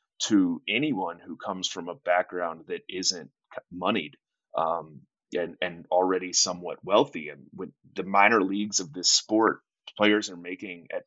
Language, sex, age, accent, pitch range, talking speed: English, male, 30-49, American, 90-115 Hz, 150 wpm